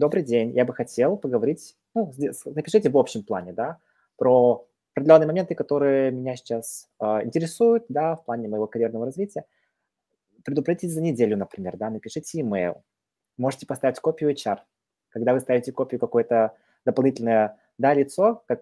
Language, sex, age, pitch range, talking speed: Russian, male, 20-39, 115-150 Hz, 150 wpm